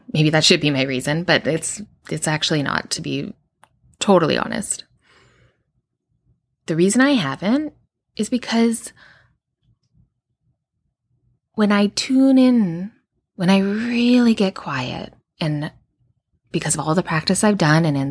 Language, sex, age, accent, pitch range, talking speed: English, female, 20-39, American, 150-200 Hz, 135 wpm